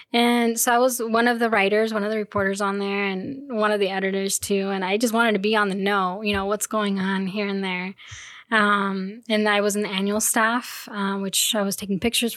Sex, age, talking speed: female, 10-29, 245 wpm